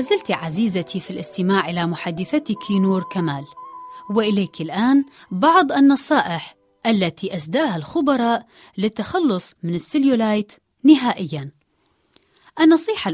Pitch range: 170-255 Hz